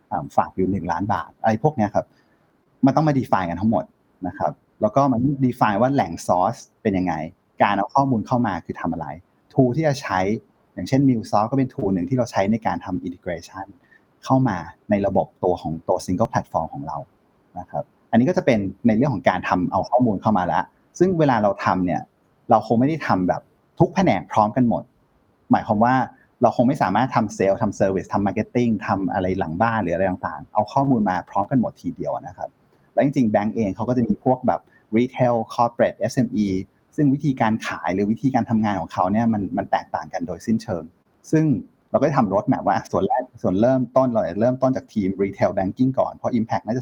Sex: male